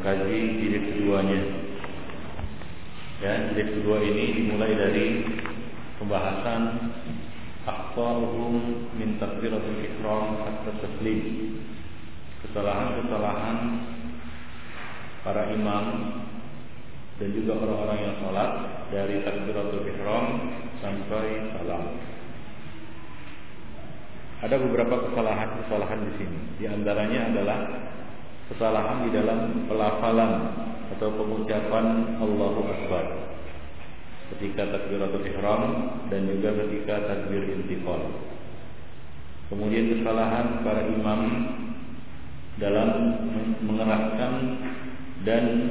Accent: Indonesian